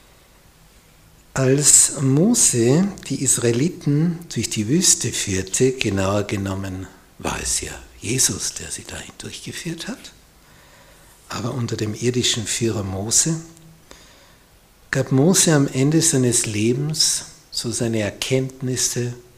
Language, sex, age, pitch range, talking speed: German, male, 60-79, 110-145 Hz, 105 wpm